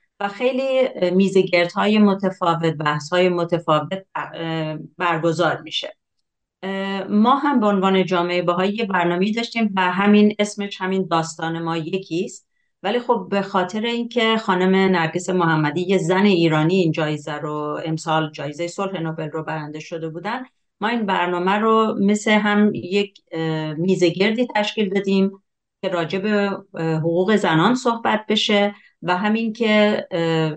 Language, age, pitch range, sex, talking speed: Persian, 40-59, 160-200 Hz, female, 130 wpm